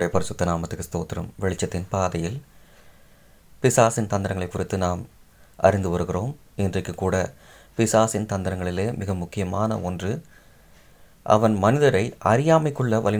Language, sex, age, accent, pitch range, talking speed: Tamil, male, 30-49, native, 100-130 Hz, 100 wpm